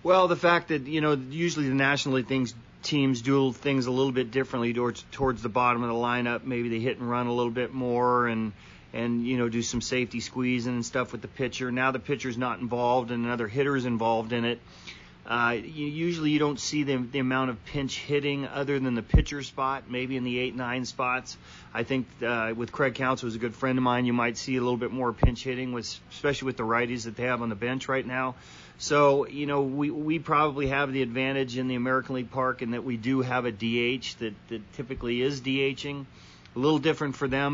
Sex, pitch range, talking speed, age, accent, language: male, 120-135 Hz, 230 wpm, 40-59, American, English